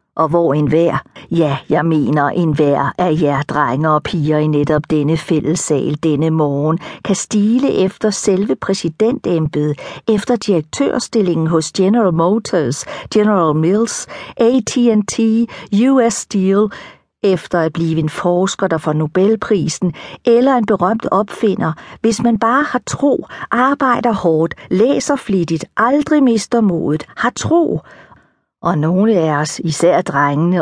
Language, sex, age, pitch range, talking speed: Danish, female, 50-69, 155-215 Hz, 125 wpm